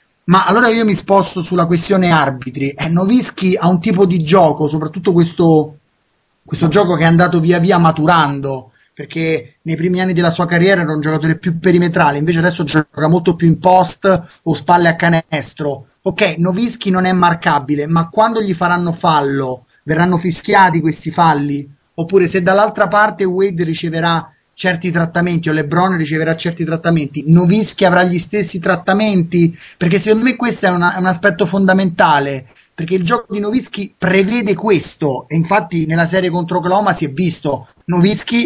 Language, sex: Italian, male